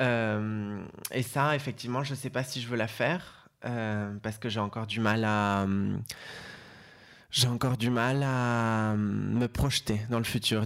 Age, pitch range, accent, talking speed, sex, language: 20-39, 110-125 Hz, French, 175 wpm, male, French